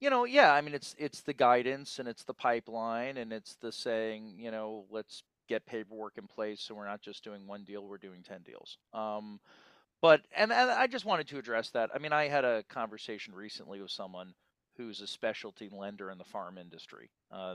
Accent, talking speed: American, 215 wpm